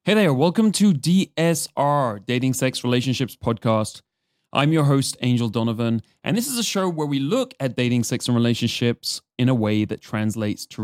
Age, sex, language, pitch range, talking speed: 20-39, male, English, 110-145 Hz, 185 wpm